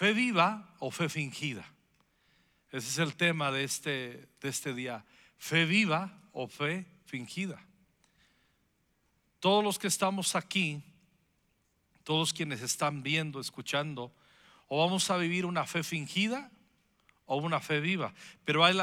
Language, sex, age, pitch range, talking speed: Spanish, male, 50-69, 145-180 Hz, 135 wpm